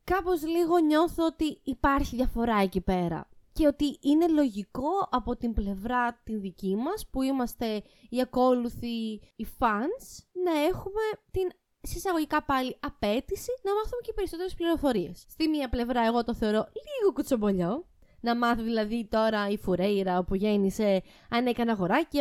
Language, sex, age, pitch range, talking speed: Greek, female, 20-39, 225-340 Hz, 145 wpm